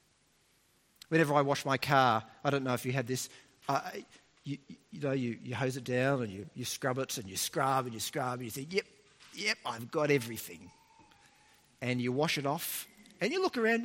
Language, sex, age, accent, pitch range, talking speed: English, male, 40-59, Australian, 135-205 Hz, 210 wpm